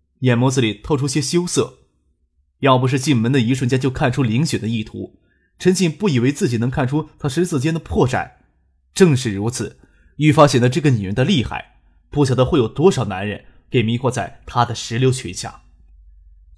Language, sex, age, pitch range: Chinese, male, 20-39, 110-155 Hz